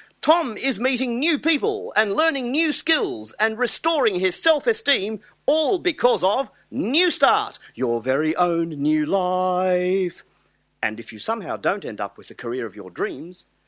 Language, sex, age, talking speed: English, male, 40-59, 160 wpm